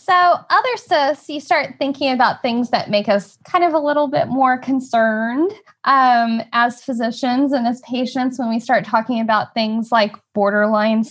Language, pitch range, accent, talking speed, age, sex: English, 200-260 Hz, American, 175 wpm, 10-29, female